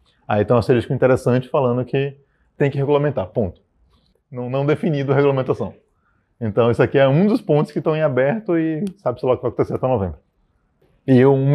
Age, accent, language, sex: 20-39, Brazilian, Portuguese, male